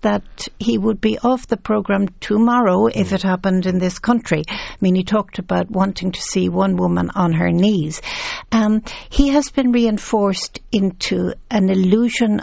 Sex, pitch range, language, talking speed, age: female, 180-230 Hz, English, 170 wpm, 60-79